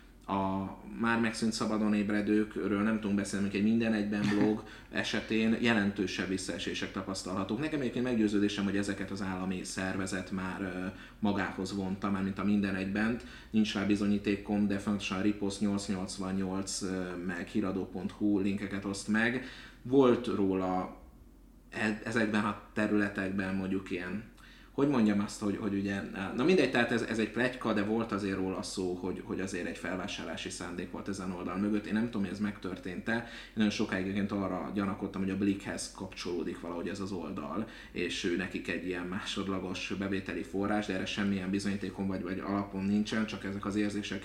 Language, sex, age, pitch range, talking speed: Hungarian, male, 30-49, 95-105 Hz, 160 wpm